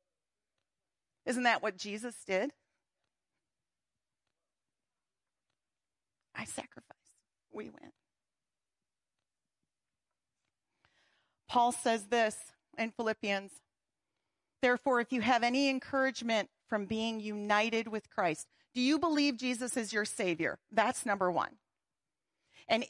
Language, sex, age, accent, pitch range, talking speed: English, female, 40-59, American, 210-275 Hz, 95 wpm